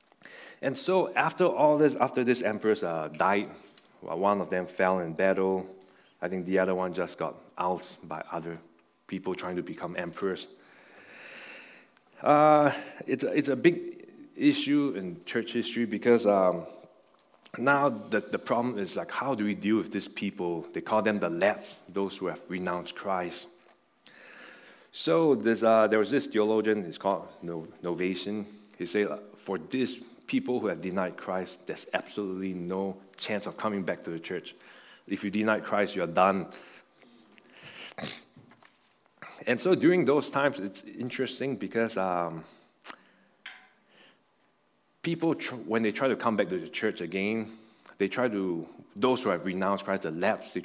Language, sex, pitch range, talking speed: English, male, 95-120 Hz, 155 wpm